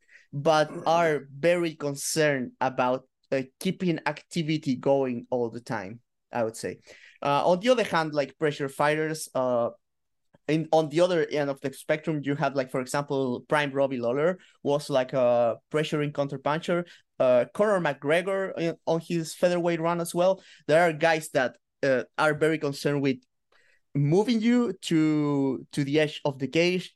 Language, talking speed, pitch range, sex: English, 160 wpm, 130-165 Hz, male